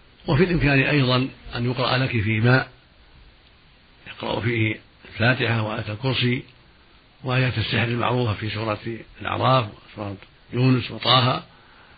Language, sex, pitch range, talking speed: Arabic, male, 115-130 Hz, 110 wpm